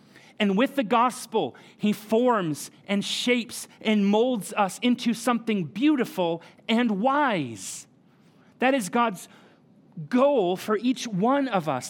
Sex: male